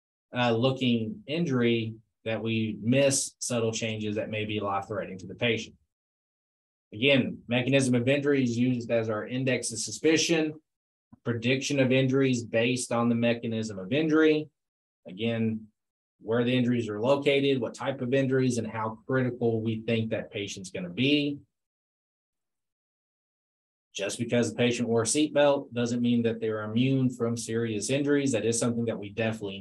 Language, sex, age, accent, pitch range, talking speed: English, male, 20-39, American, 105-130 Hz, 155 wpm